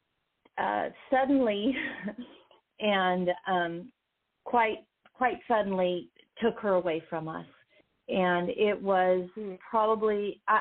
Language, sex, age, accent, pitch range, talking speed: English, female, 40-59, American, 180-220 Hz, 90 wpm